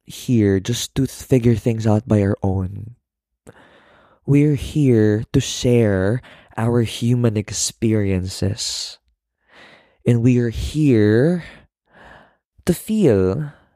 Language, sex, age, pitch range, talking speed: Filipino, male, 20-39, 95-125 Hz, 100 wpm